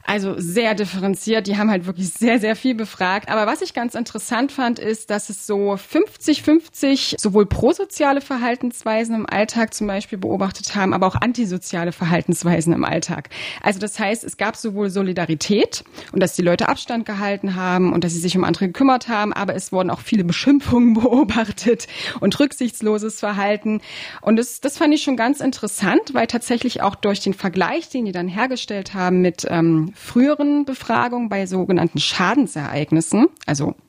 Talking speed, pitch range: 170 wpm, 180-240 Hz